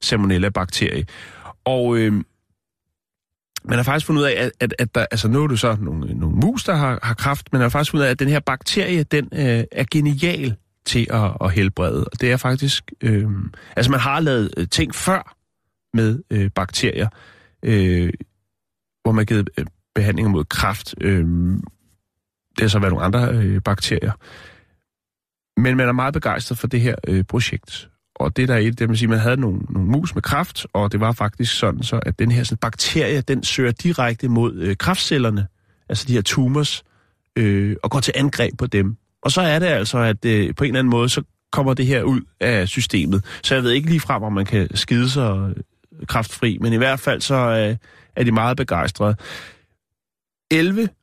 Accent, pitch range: native, 100-130 Hz